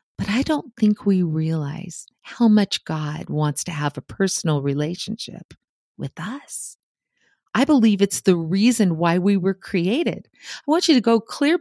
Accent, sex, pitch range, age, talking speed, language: American, female, 175-220 Hz, 40-59, 165 wpm, English